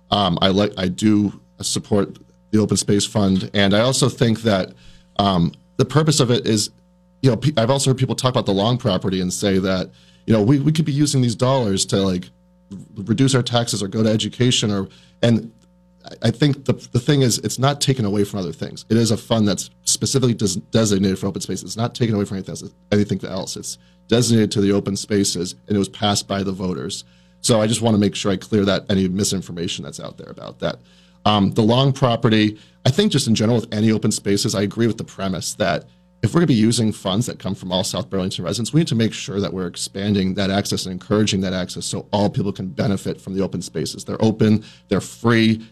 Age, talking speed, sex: 30-49, 230 wpm, male